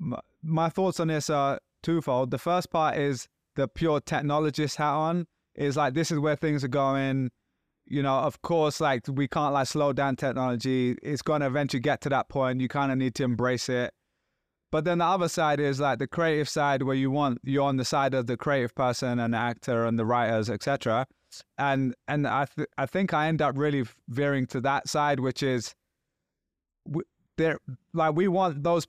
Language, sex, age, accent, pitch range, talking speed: English, male, 20-39, British, 130-155 Hz, 205 wpm